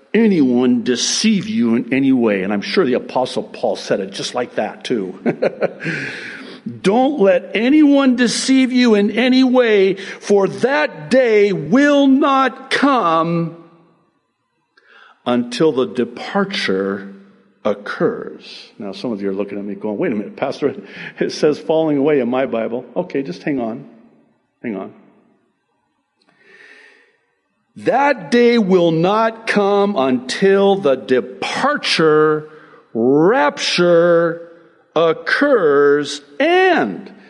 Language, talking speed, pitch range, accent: English, 115 wpm, 140-225 Hz, American